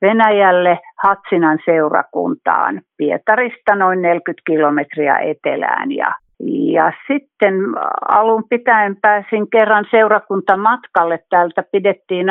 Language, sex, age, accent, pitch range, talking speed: Finnish, female, 50-69, native, 170-215 Hz, 90 wpm